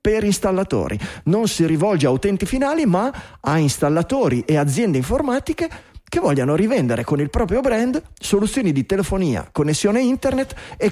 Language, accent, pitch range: Italian, native, 140-210 Hz